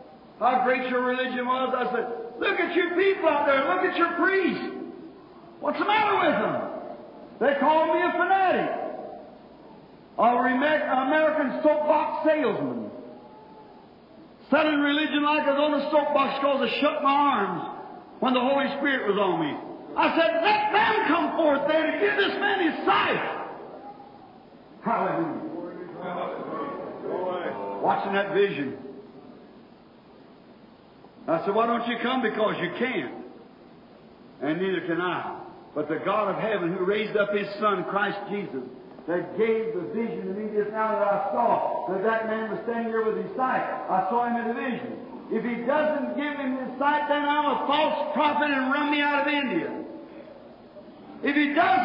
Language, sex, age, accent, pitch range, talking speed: English, male, 50-69, American, 225-315 Hz, 165 wpm